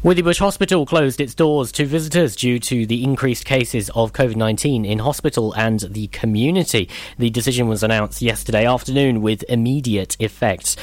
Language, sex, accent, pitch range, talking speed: English, male, British, 110-155 Hz, 155 wpm